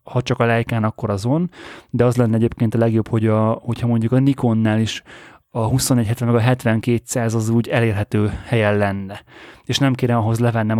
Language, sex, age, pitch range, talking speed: Hungarian, male, 20-39, 110-125 Hz, 190 wpm